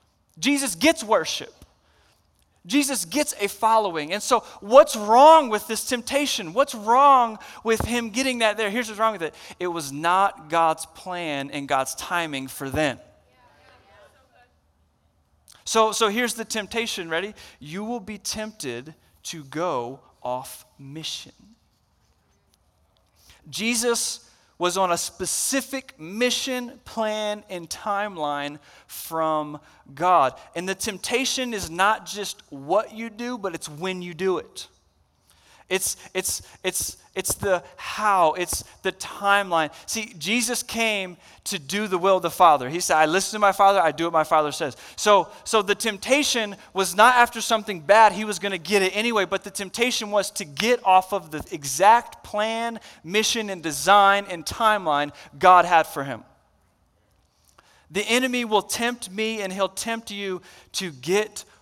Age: 30-49